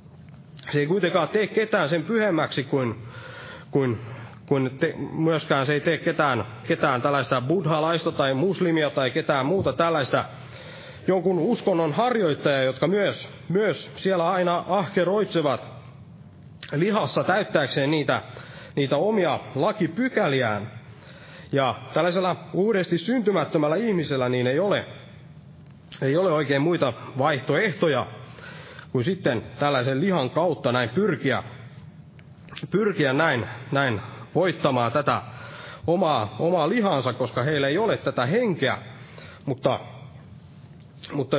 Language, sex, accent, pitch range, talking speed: Finnish, male, native, 130-175 Hz, 110 wpm